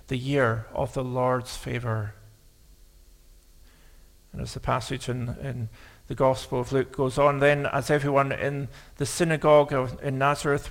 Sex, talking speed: male, 145 wpm